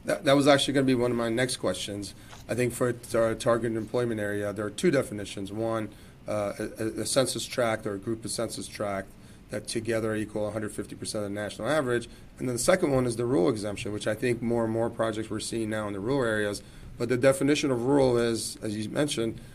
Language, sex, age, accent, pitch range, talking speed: English, male, 30-49, American, 105-120 Hz, 230 wpm